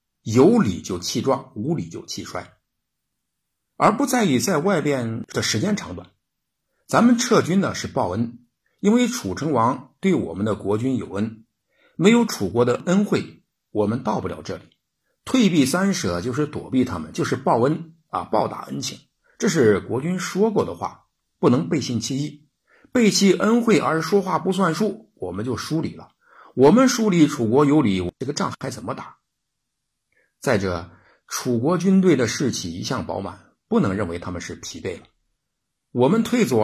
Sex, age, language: male, 60-79, Chinese